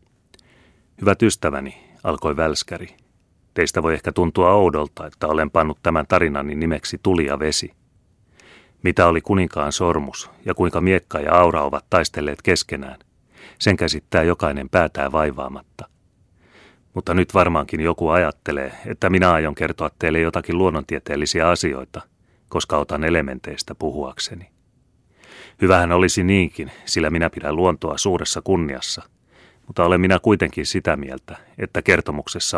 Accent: native